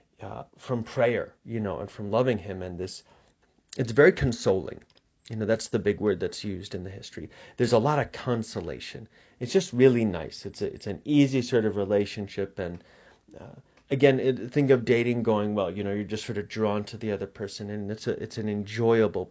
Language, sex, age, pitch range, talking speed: English, male, 30-49, 100-130 Hz, 210 wpm